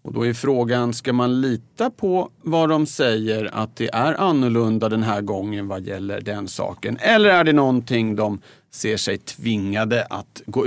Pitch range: 110-140 Hz